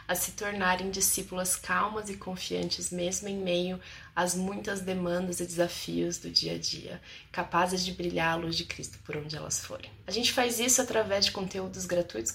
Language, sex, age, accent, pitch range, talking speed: Portuguese, female, 20-39, Brazilian, 175-235 Hz, 185 wpm